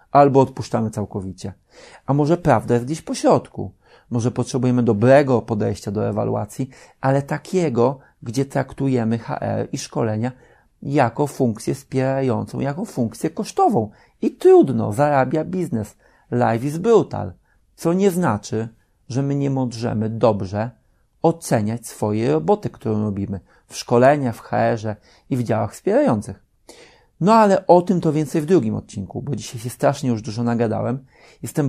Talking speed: 140 wpm